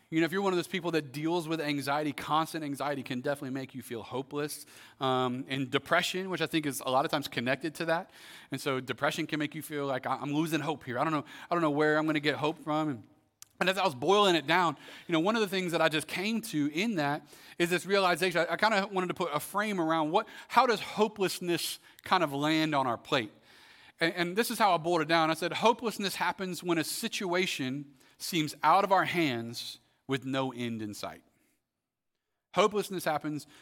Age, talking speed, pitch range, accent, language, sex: 30-49, 230 wpm, 145-180 Hz, American, English, male